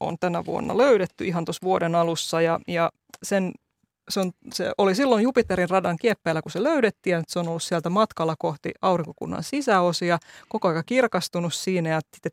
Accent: native